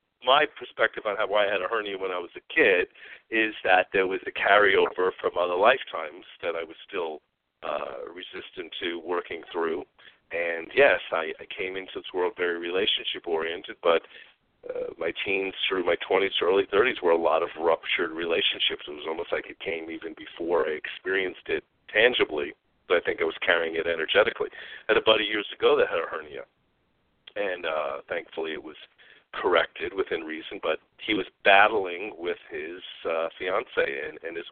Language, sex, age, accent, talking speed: English, male, 40-59, American, 185 wpm